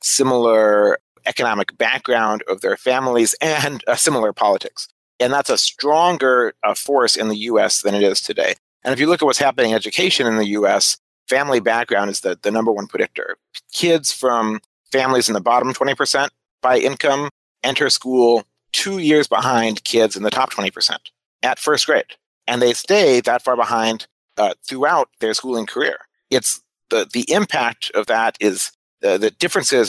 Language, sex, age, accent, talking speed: English, male, 40-59, American, 170 wpm